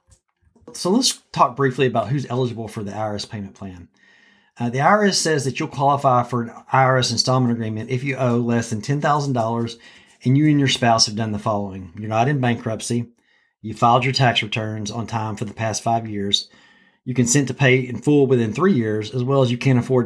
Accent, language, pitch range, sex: American, English, 110-130 Hz, male